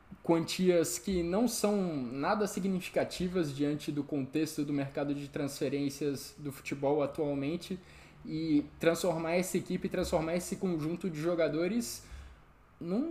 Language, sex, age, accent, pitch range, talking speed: Portuguese, male, 20-39, Brazilian, 140-175 Hz, 120 wpm